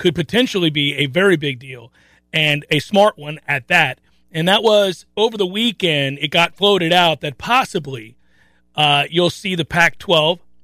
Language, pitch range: English, 160-210 Hz